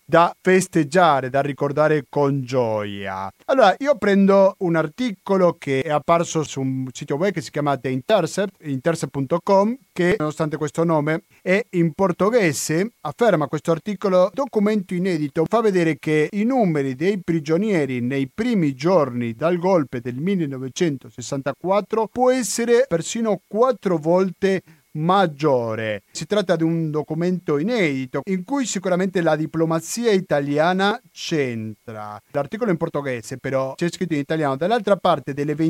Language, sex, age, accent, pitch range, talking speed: Italian, male, 40-59, native, 150-195 Hz, 135 wpm